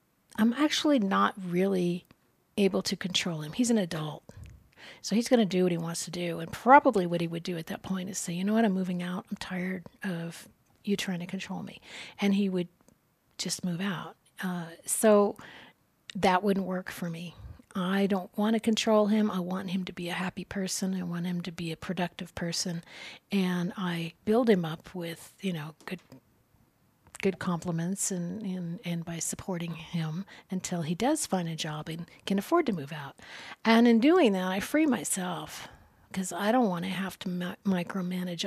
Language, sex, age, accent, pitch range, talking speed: English, female, 40-59, American, 175-205 Hz, 195 wpm